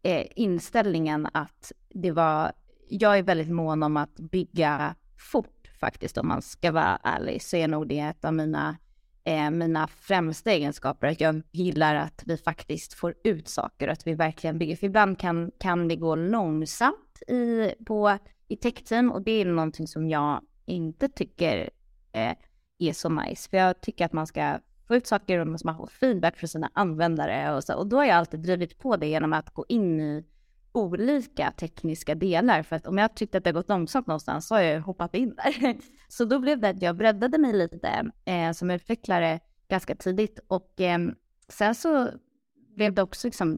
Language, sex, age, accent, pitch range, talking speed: English, female, 20-39, Swedish, 160-215 Hz, 190 wpm